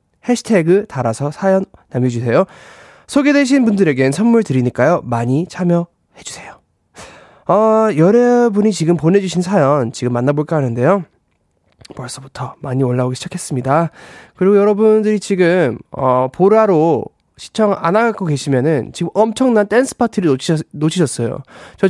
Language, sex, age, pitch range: Korean, male, 20-39, 140-210 Hz